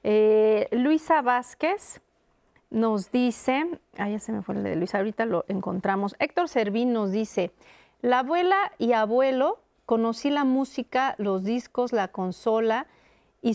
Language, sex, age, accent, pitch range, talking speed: Spanish, female, 40-59, Mexican, 205-260 Hz, 140 wpm